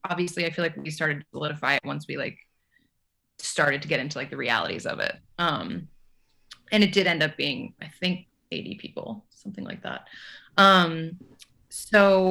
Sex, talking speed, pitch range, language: female, 180 wpm, 155-185 Hz, English